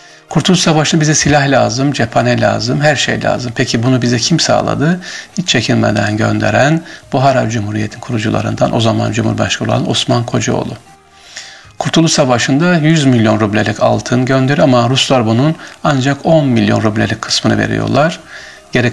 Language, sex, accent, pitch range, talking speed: Turkish, male, native, 110-140 Hz, 135 wpm